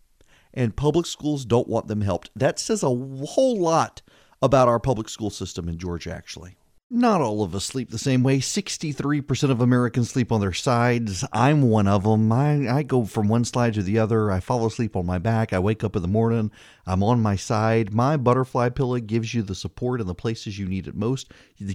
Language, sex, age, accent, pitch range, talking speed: English, male, 40-59, American, 105-145 Hz, 220 wpm